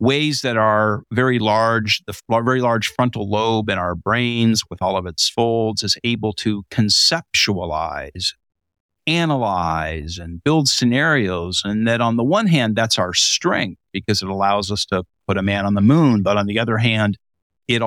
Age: 50-69